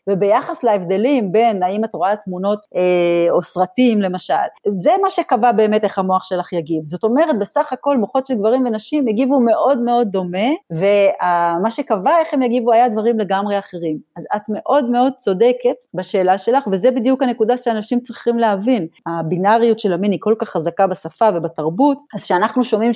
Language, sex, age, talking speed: Hebrew, female, 30-49, 170 wpm